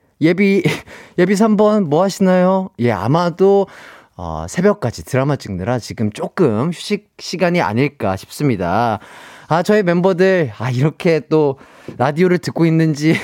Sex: male